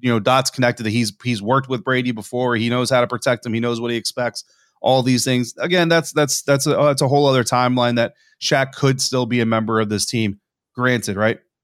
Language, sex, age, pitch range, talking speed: English, male, 30-49, 115-140 Hz, 240 wpm